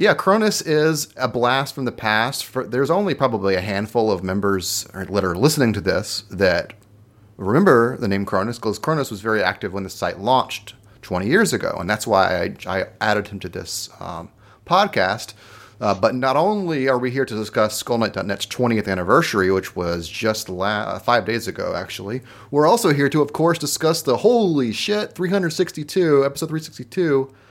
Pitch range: 100-130 Hz